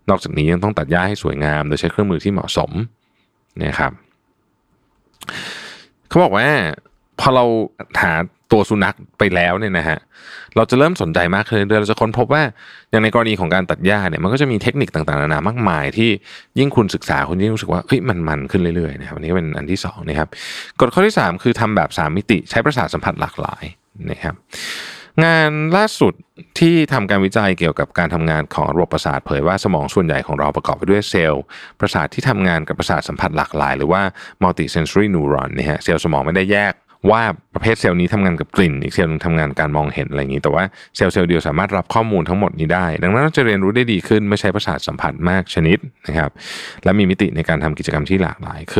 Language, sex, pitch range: Thai, male, 80-110 Hz